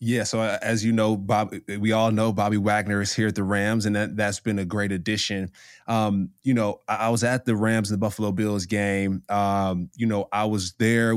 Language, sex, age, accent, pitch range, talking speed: English, male, 20-39, American, 105-120 Hz, 230 wpm